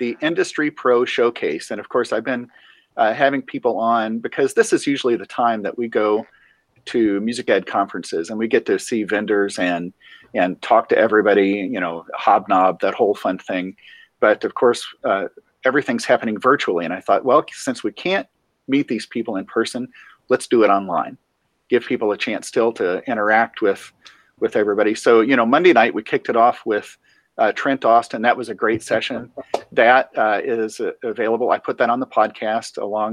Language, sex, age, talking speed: English, male, 40-59, 195 wpm